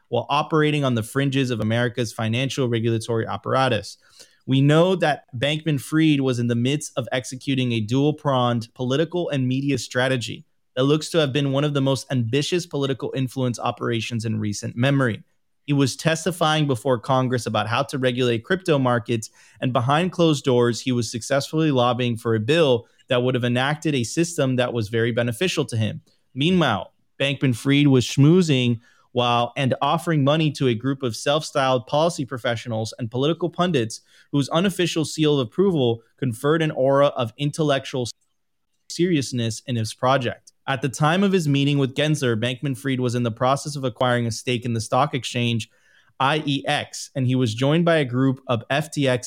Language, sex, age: English, male, 30-49